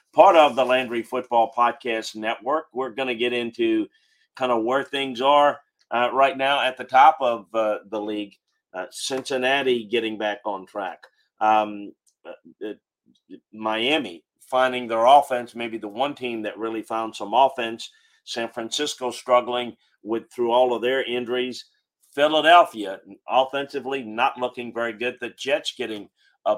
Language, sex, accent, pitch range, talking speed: English, male, American, 110-130 Hz, 155 wpm